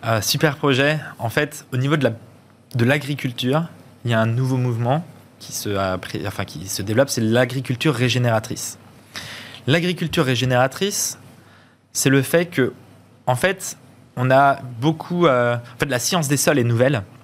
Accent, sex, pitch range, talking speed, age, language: French, male, 120-150 Hz, 165 wpm, 20-39, French